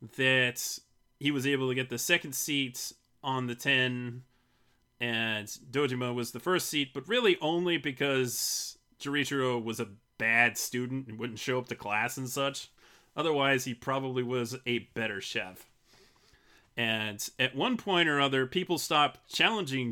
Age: 30-49